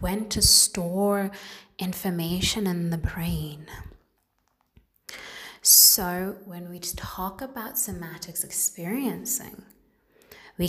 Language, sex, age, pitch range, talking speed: English, female, 20-39, 165-205 Hz, 85 wpm